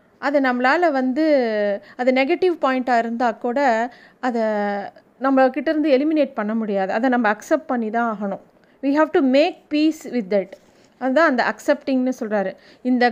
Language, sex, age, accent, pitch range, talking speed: Tamil, female, 30-49, native, 240-310 Hz, 145 wpm